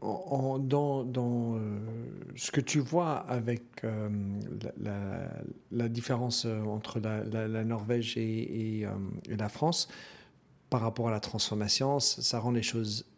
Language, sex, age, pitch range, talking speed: French, male, 50-69, 115-135 Hz, 160 wpm